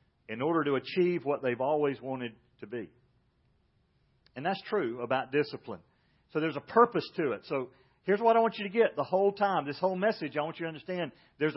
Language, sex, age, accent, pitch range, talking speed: English, male, 40-59, American, 130-185 Hz, 215 wpm